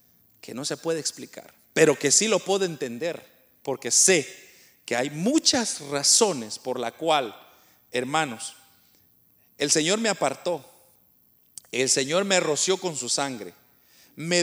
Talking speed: 135 wpm